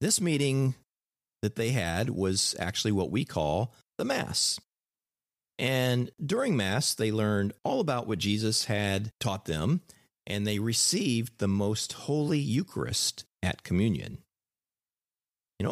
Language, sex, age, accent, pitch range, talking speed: English, male, 40-59, American, 95-130 Hz, 130 wpm